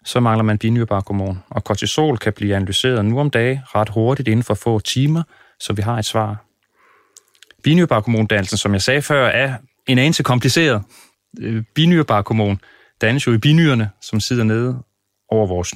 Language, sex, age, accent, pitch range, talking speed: Danish, male, 30-49, native, 105-130 Hz, 160 wpm